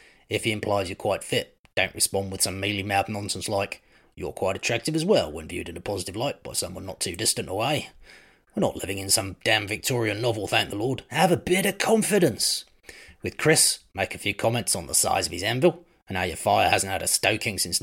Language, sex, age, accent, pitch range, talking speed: English, male, 30-49, British, 95-120 Hz, 225 wpm